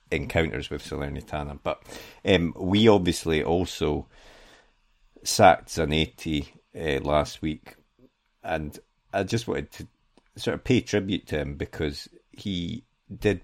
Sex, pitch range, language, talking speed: male, 75-85 Hz, English, 125 wpm